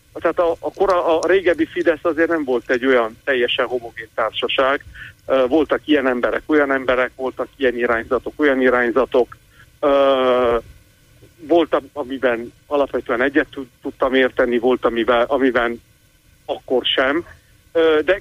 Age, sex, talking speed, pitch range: 50-69, male, 120 wpm, 125-155 Hz